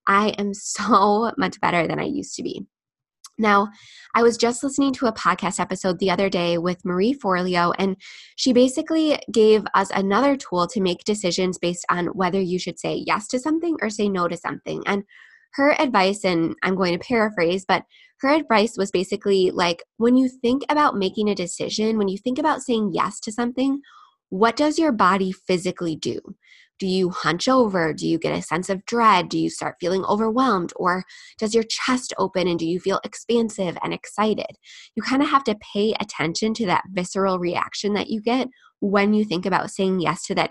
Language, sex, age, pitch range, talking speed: English, female, 20-39, 180-235 Hz, 200 wpm